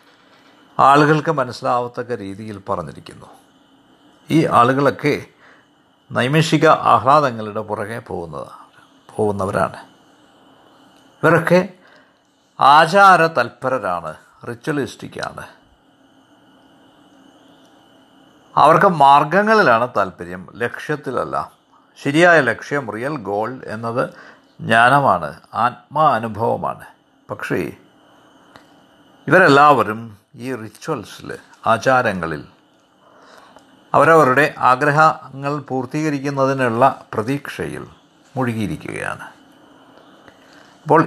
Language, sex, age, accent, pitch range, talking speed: Malayalam, male, 50-69, native, 120-160 Hz, 55 wpm